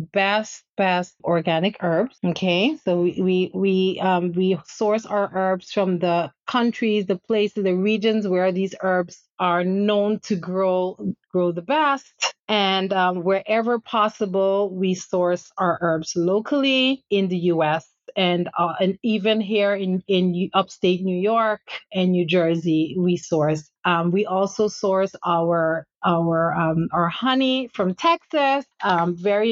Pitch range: 180-220 Hz